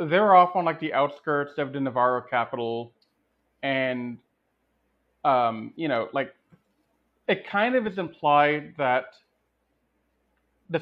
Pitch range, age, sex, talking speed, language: 125-155 Hz, 30-49, male, 120 wpm, English